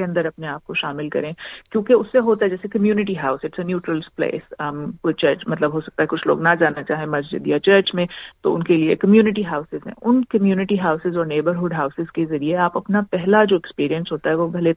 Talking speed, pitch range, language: 205 wpm, 165-210 Hz, Urdu